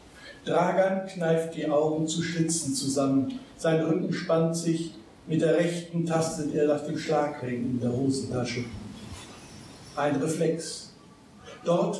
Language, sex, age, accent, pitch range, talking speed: German, male, 60-79, German, 145-185 Hz, 125 wpm